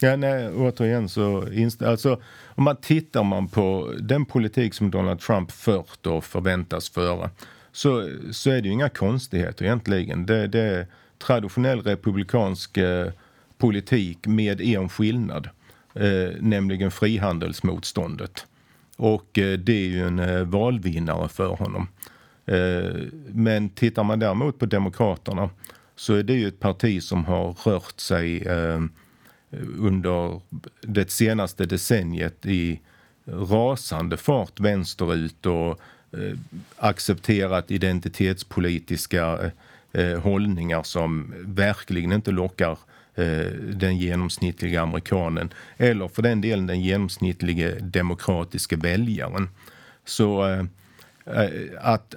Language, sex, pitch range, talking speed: Swedish, male, 90-110 Hz, 115 wpm